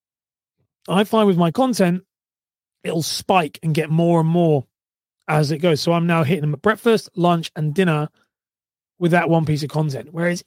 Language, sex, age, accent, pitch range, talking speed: English, male, 30-49, British, 150-195 Hz, 185 wpm